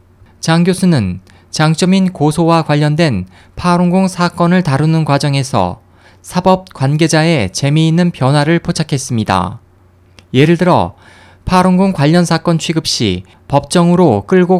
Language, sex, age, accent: Korean, male, 20-39, native